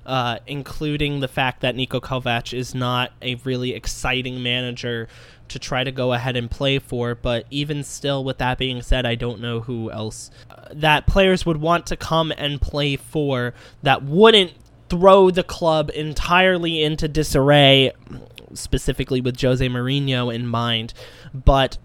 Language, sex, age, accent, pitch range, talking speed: English, male, 10-29, American, 125-165 Hz, 160 wpm